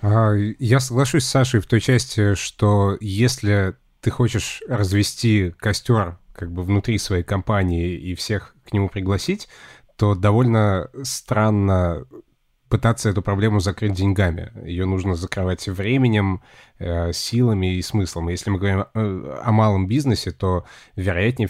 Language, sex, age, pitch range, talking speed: Russian, male, 20-39, 90-110 Hz, 130 wpm